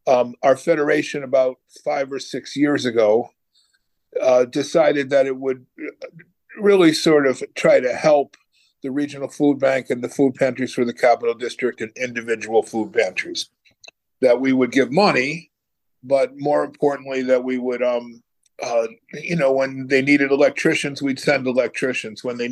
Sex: male